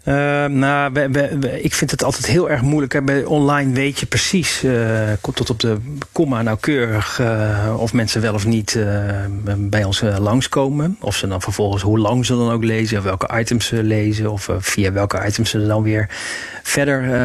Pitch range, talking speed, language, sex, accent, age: 110-125 Hz, 205 wpm, Dutch, male, Dutch, 40-59